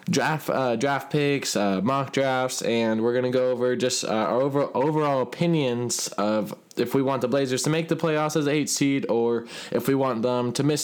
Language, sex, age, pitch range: English, male, 20-39, 120-145 Hz